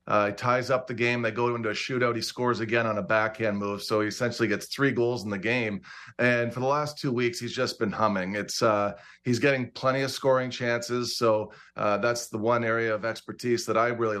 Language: English